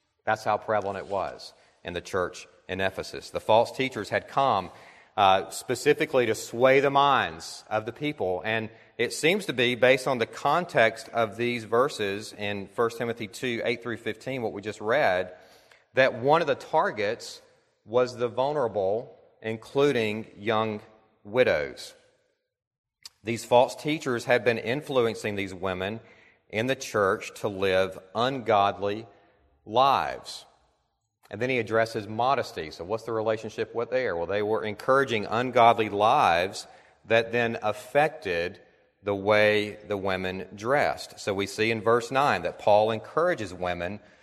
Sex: male